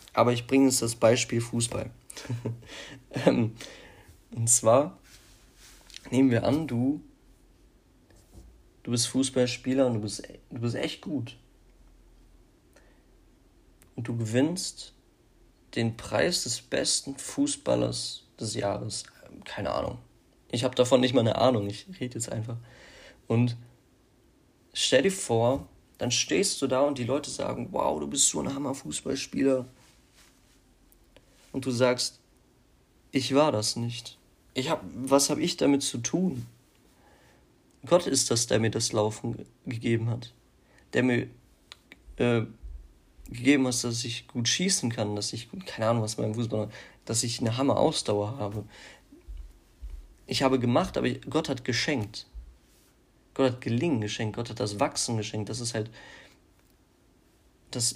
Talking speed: 135 wpm